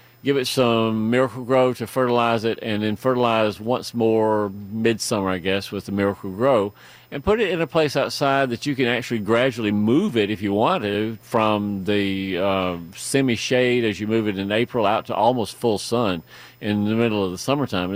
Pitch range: 105-130 Hz